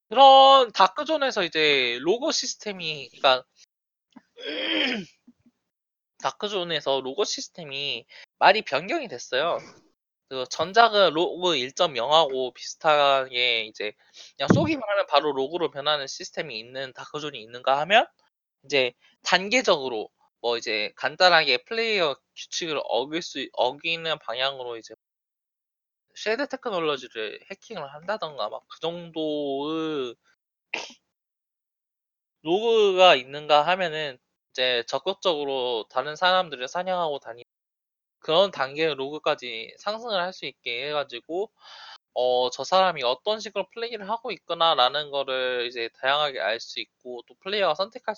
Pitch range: 135-210 Hz